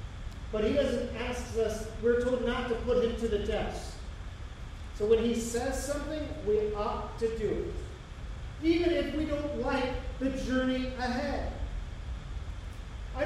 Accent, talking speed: American, 150 wpm